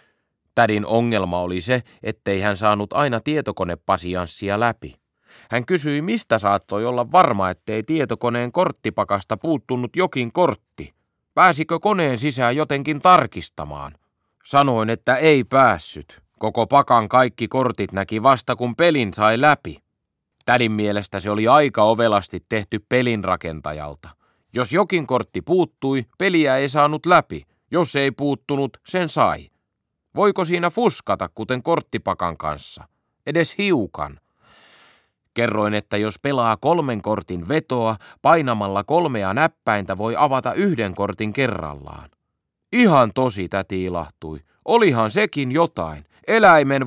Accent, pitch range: native, 100-145 Hz